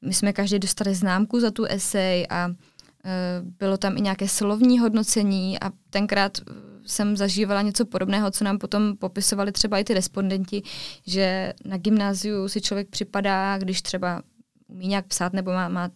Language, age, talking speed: Czech, 20-39, 165 wpm